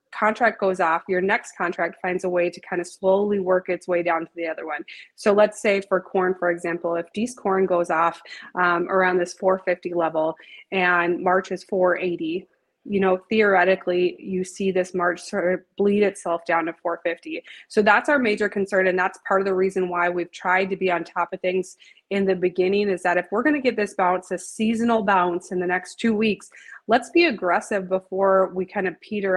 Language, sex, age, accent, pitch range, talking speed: English, female, 20-39, American, 180-200 Hz, 210 wpm